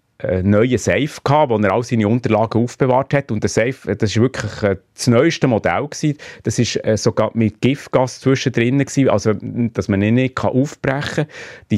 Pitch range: 95-120 Hz